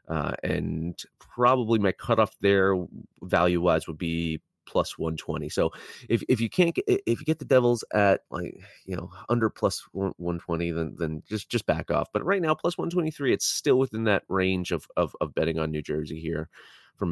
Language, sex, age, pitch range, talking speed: English, male, 30-49, 90-120 Hz, 185 wpm